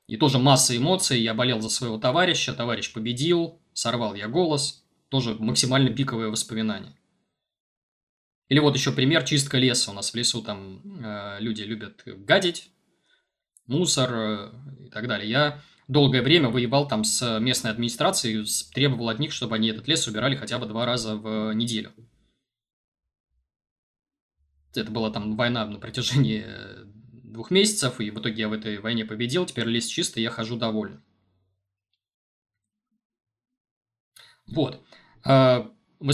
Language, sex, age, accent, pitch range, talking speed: Russian, male, 20-39, native, 110-140 Hz, 135 wpm